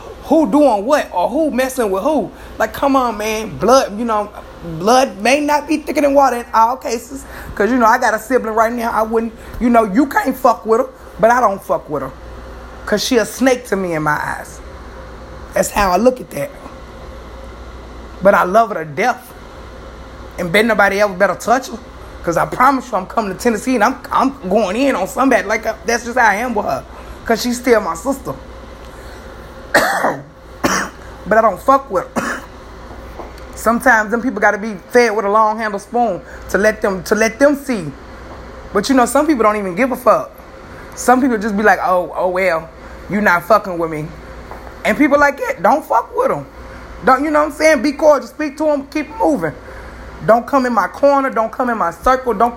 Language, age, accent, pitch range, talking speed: English, 20-39, American, 205-270 Hz, 215 wpm